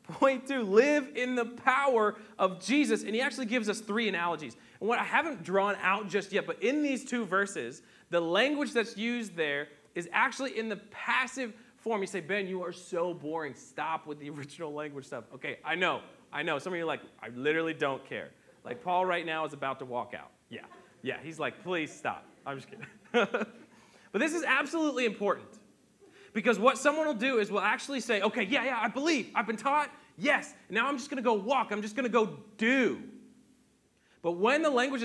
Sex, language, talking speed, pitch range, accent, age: male, English, 210 wpm, 185-255 Hz, American, 30-49